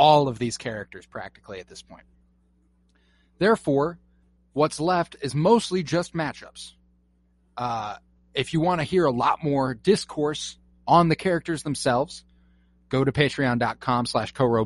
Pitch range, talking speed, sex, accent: 110-160 Hz, 140 wpm, male, American